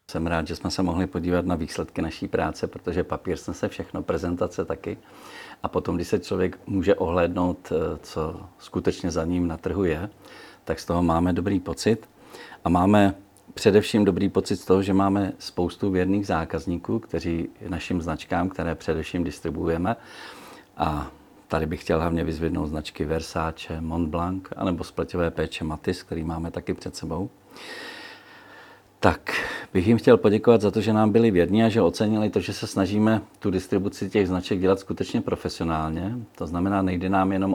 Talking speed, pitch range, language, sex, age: 165 wpm, 85-95 Hz, Czech, male, 50-69